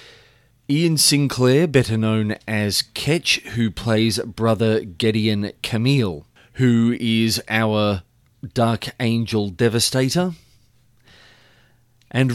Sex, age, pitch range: male, 30-49, 110-135 Hz